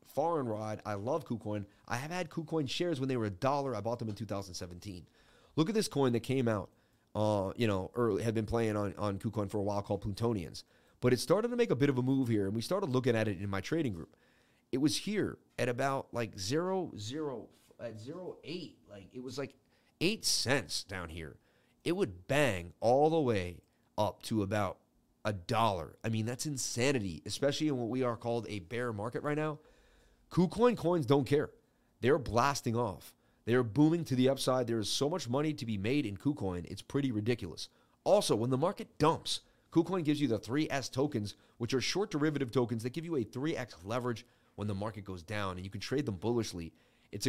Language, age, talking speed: English, 30-49, 210 wpm